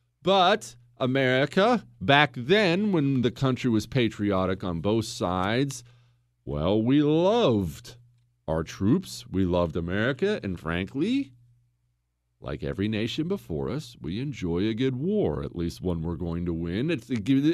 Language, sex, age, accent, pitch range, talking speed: English, male, 40-59, American, 95-155 Hz, 140 wpm